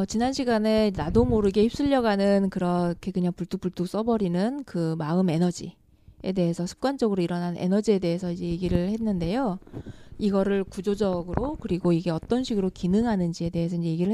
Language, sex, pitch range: Korean, female, 175-220 Hz